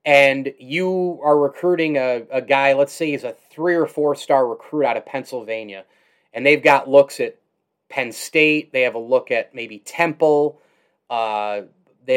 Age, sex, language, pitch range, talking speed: 30-49, male, English, 135-160 Hz, 175 wpm